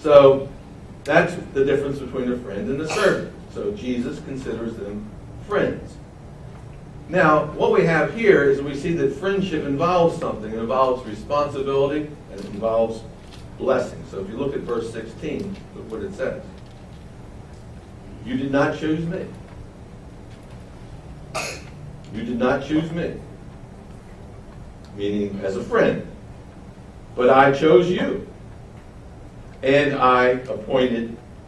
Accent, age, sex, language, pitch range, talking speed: American, 60-79, male, English, 125-155 Hz, 125 wpm